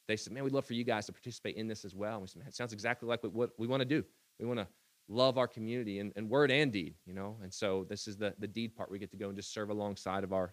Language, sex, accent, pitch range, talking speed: English, male, American, 105-125 Hz, 315 wpm